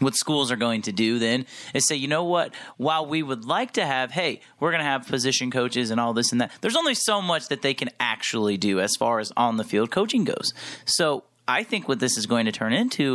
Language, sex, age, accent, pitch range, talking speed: English, male, 30-49, American, 120-150 Hz, 260 wpm